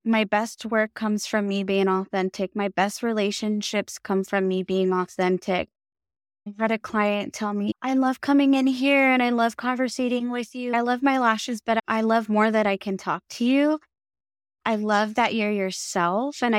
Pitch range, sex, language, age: 195-240 Hz, female, English, 10-29